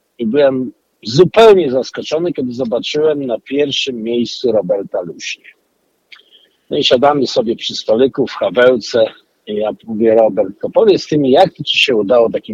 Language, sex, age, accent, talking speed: Polish, male, 50-69, native, 150 wpm